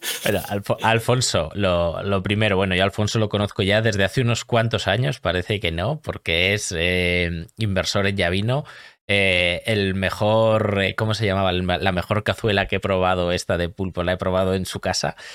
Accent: Spanish